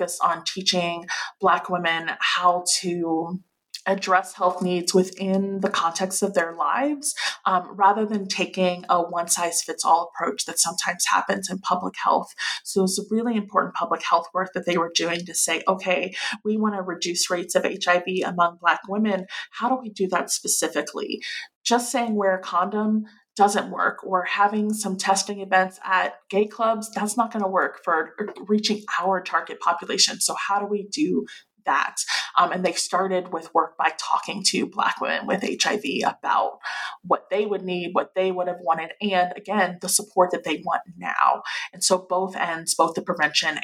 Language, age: English, 20-39